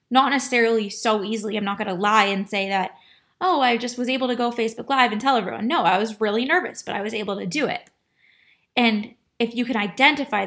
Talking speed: 235 wpm